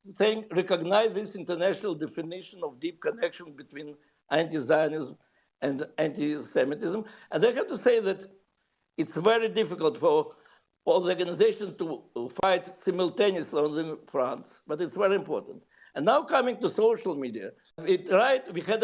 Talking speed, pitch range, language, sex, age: 140 wpm, 170-225 Hz, English, male, 60-79